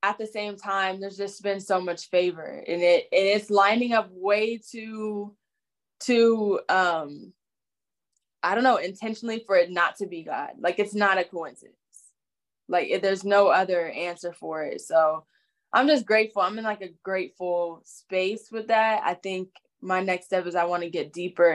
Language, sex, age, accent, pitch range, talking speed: English, female, 10-29, American, 175-200 Hz, 185 wpm